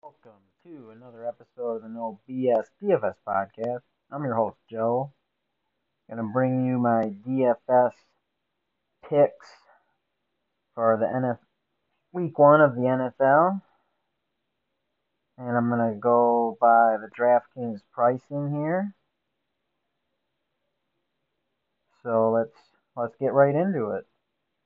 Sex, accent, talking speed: male, American, 110 wpm